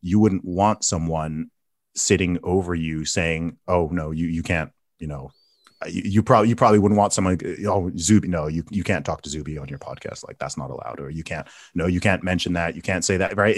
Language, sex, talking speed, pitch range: English, male, 230 wpm, 85-105 Hz